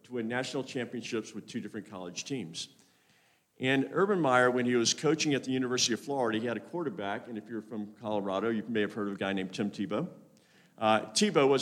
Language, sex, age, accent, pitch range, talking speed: English, male, 50-69, American, 130-195 Hz, 215 wpm